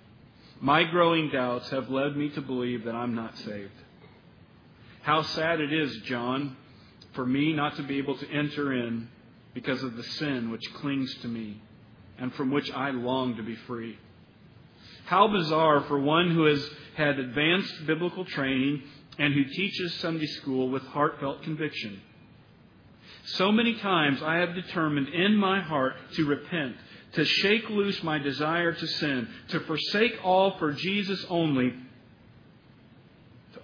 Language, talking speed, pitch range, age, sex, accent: English, 150 wpm, 120-155 Hz, 40-59, male, American